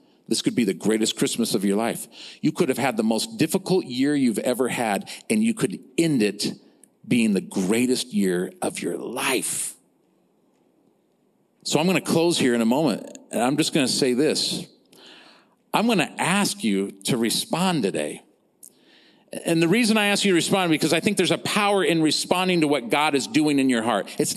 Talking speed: 200 wpm